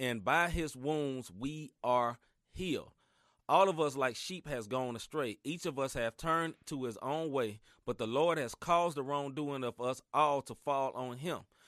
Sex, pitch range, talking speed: male, 130-165 Hz, 195 wpm